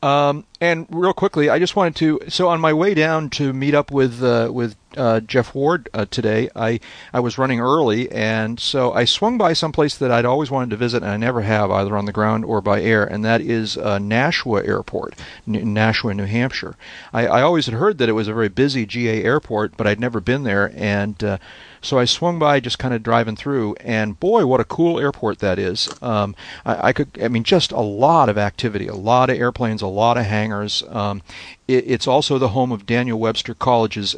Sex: male